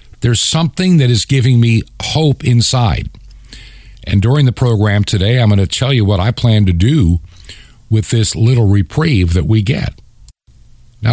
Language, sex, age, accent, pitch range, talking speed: English, male, 50-69, American, 95-120 Hz, 165 wpm